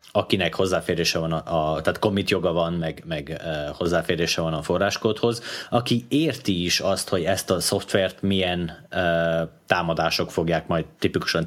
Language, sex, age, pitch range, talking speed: Hungarian, male, 30-49, 85-105 Hz, 155 wpm